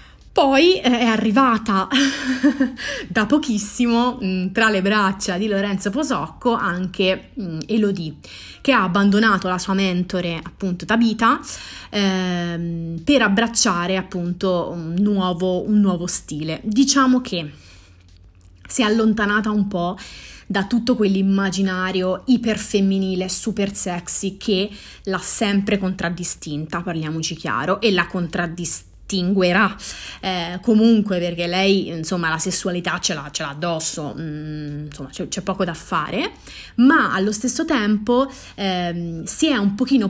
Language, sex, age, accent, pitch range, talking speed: Italian, female, 30-49, native, 175-225 Hz, 120 wpm